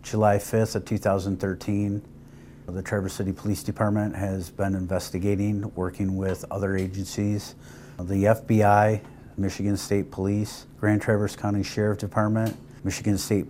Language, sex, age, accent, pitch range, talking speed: English, male, 50-69, American, 95-110 Hz, 125 wpm